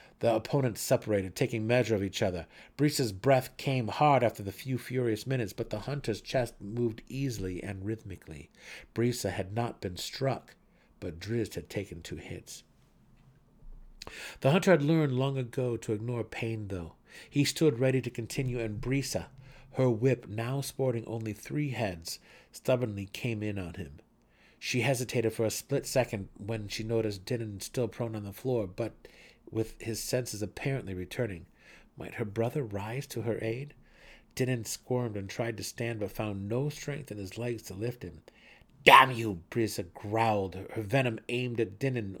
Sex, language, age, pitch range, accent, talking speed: male, English, 50-69, 105-130 Hz, American, 170 wpm